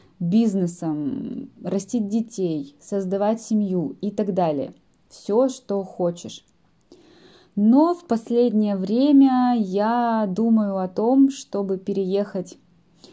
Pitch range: 180-225 Hz